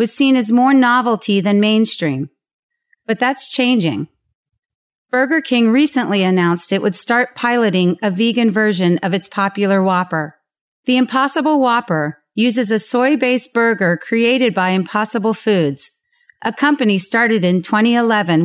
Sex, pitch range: female, 185-245 Hz